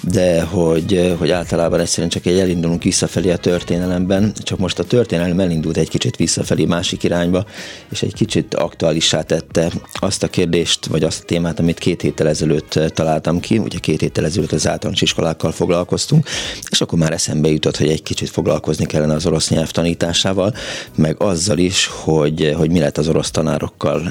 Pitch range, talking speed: 80-95 Hz, 175 wpm